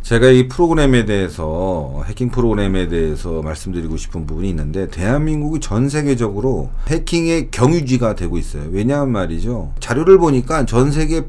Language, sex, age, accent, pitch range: Korean, male, 40-59, native, 95-150 Hz